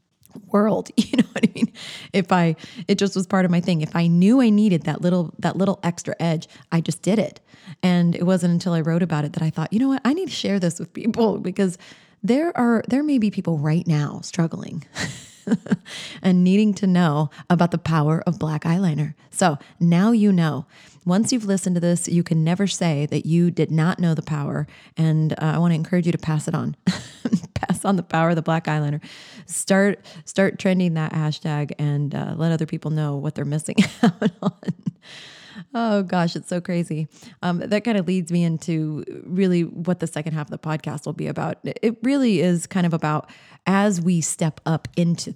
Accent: American